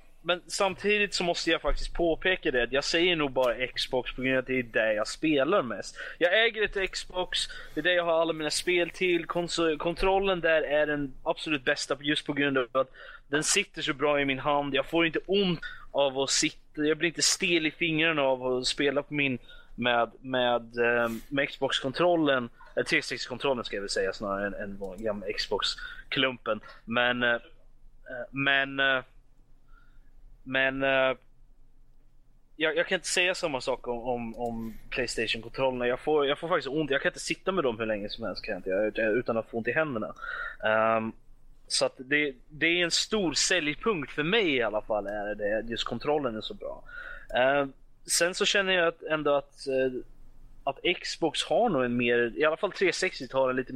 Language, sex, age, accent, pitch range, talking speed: Swedish, male, 20-39, native, 125-170 Hz, 185 wpm